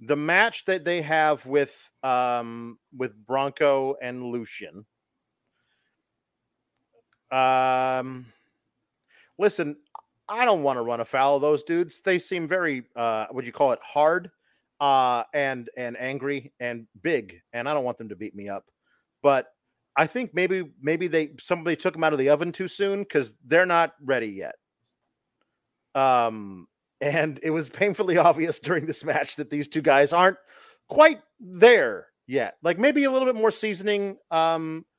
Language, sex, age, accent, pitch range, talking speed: English, male, 40-59, American, 125-180 Hz, 155 wpm